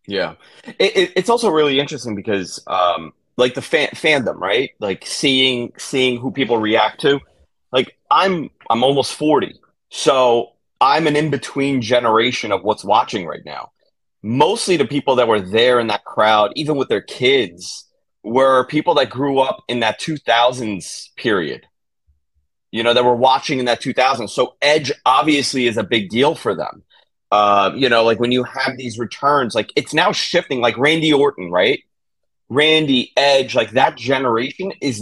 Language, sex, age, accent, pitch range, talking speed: English, male, 30-49, American, 115-150 Hz, 170 wpm